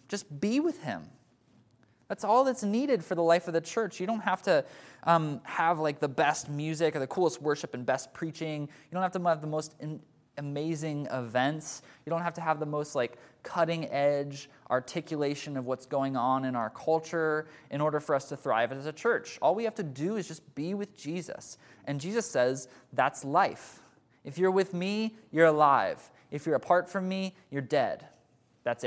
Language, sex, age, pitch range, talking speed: English, male, 20-39, 140-185 Hz, 200 wpm